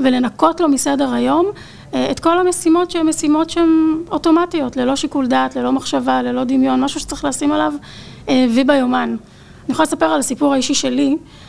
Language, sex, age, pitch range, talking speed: Hebrew, female, 30-49, 245-295 Hz, 155 wpm